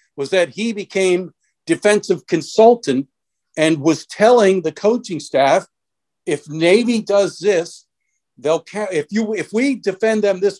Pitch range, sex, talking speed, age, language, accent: 155-205 Hz, male, 135 wpm, 50-69, English, American